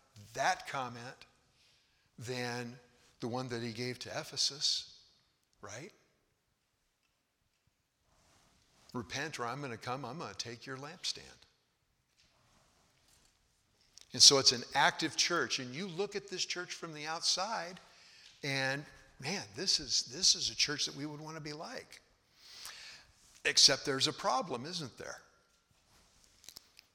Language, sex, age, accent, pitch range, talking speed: English, male, 60-79, American, 115-145 Hz, 130 wpm